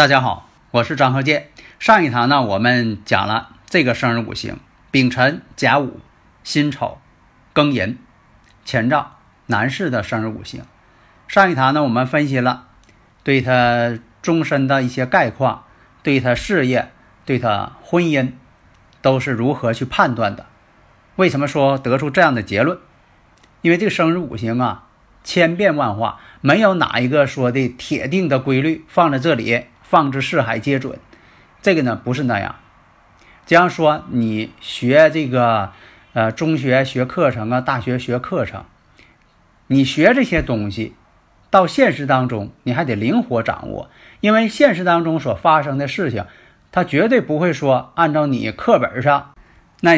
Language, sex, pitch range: Chinese, male, 115-150 Hz